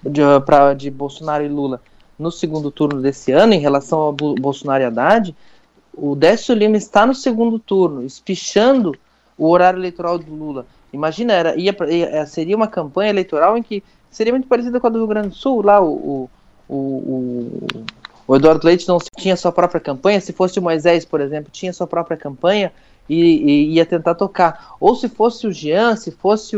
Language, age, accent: Portuguese, 20-39, Brazilian